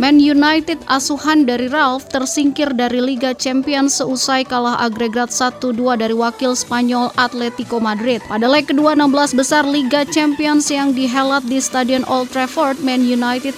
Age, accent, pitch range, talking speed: 20-39, native, 245-290 Hz, 145 wpm